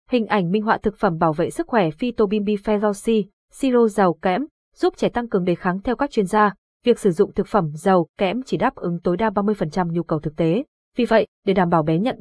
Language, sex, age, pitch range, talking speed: Vietnamese, female, 20-39, 190-230 Hz, 240 wpm